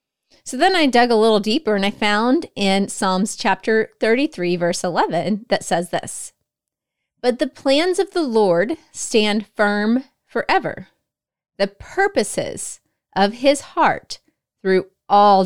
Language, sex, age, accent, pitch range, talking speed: English, female, 30-49, American, 195-260 Hz, 135 wpm